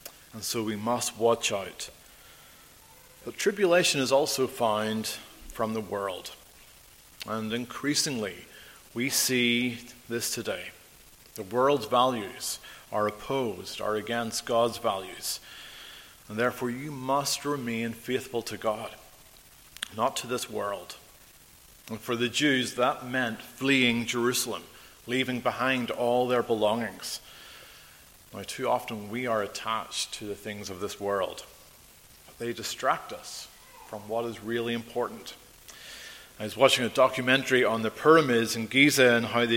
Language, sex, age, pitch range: English, male, 40-59, 110-135 Hz